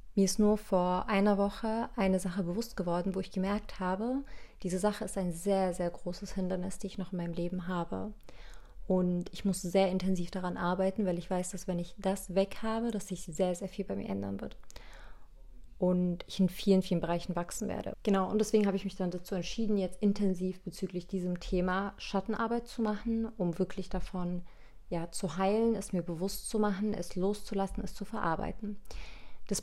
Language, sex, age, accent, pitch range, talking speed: German, female, 30-49, German, 180-210 Hz, 195 wpm